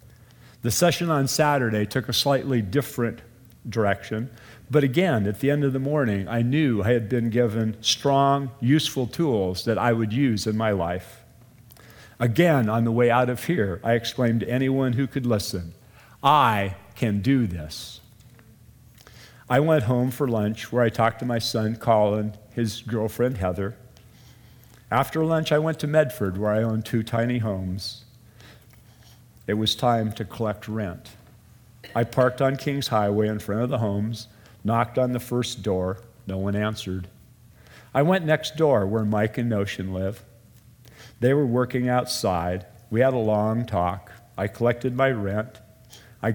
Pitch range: 105-125 Hz